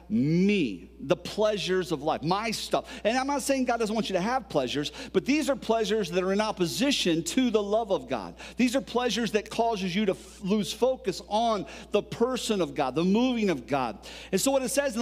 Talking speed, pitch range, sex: 220 wpm, 190-255 Hz, male